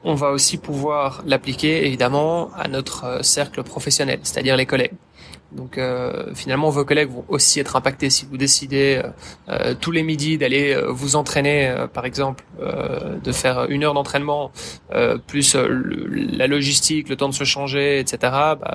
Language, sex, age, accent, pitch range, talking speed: French, male, 20-39, French, 135-150 Hz, 175 wpm